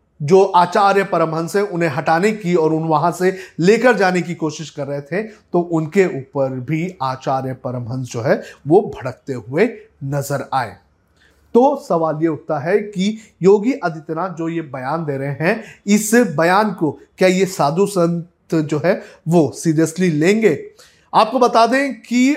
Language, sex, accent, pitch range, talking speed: Hindi, male, native, 160-200 Hz, 165 wpm